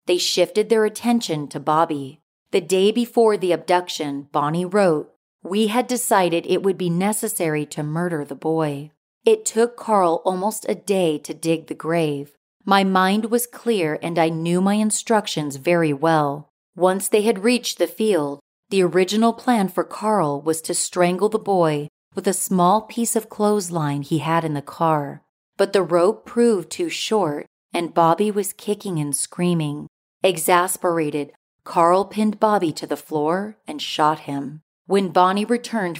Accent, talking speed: American, 160 wpm